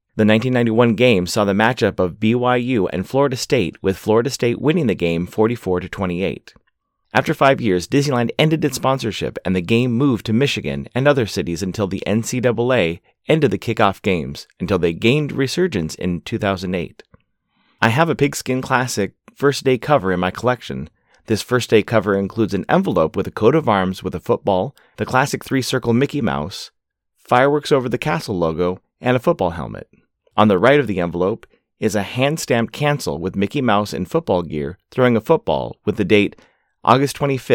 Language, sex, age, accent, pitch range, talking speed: English, male, 30-49, American, 95-130 Hz, 175 wpm